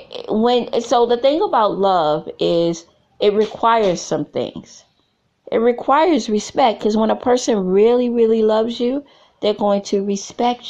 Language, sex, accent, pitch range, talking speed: English, female, American, 185-230 Hz, 145 wpm